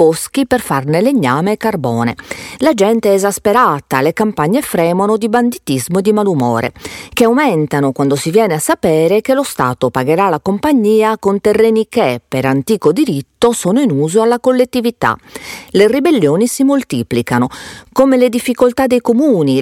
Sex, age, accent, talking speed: female, 40-59, native, 155 wpm